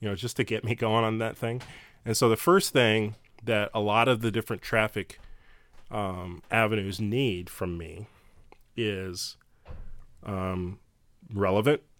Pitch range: 95-115 Hz